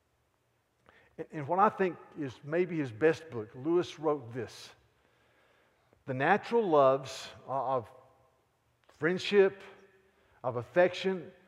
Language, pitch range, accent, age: English, 125-175 Hz, American, 50-69